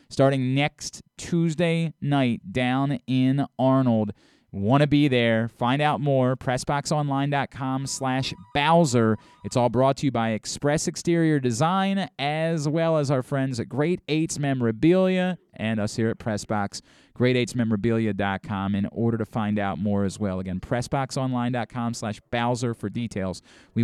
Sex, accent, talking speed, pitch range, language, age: male, American, 140 wpm, 115-150 Hz, English, 20-39